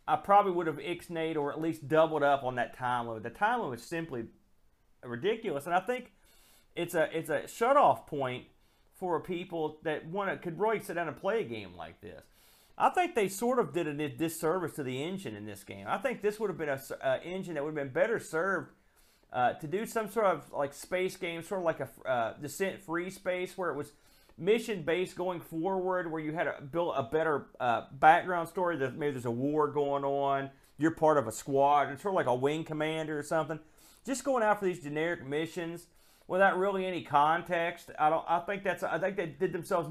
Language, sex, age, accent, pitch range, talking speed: English, male, 40-59, American, 145-185 Hz, 220 wpm